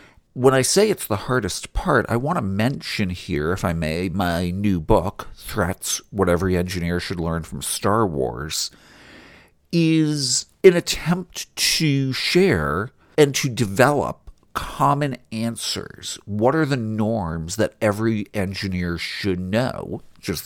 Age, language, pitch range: 50-69, English, 95-130 Hz